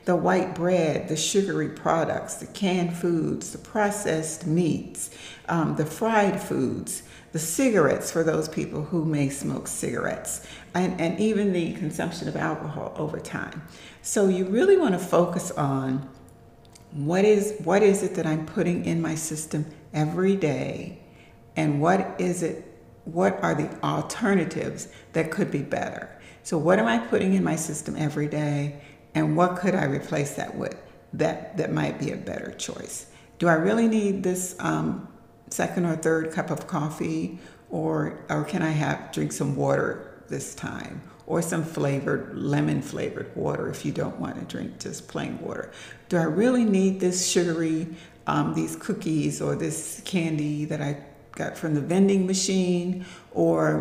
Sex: female